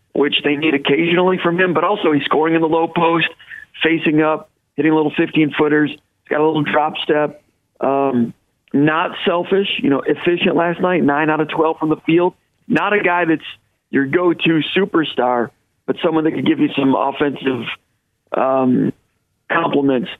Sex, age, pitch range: male, 40-59, 140-165 Hz